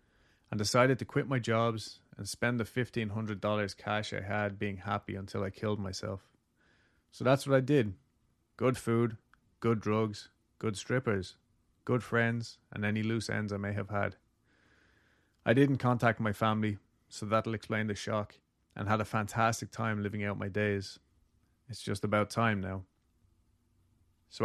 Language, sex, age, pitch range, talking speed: English, male, 30-49, 100-115 Hz, 160 wpm